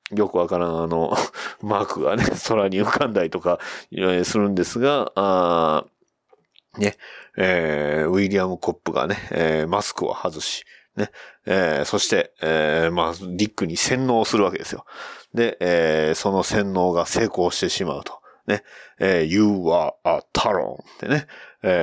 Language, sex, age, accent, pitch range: Japanese, male, 40-59, native, 85-125 Hz